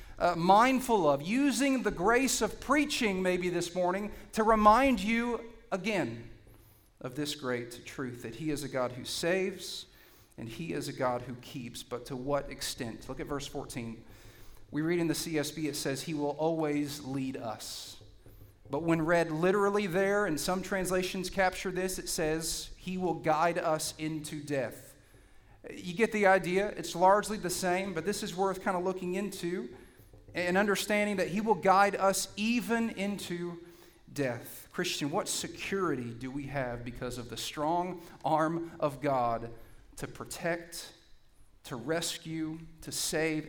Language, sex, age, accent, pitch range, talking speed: English, male, 40-59, American, 125-185 Hz, 160 wpm